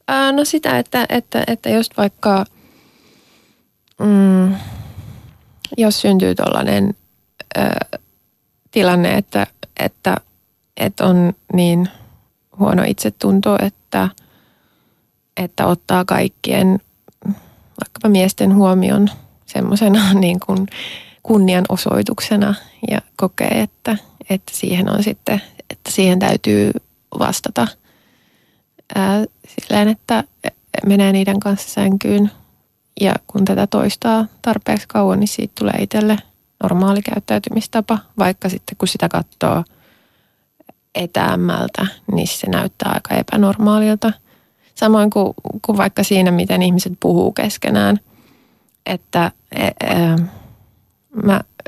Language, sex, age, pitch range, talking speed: Finnish, female, 20-39, 180-210 Hz, 90 wpm